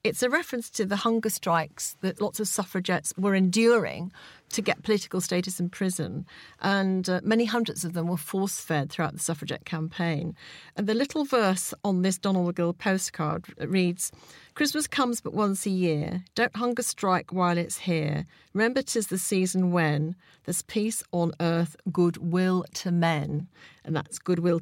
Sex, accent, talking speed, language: female, British, 165 wpm, English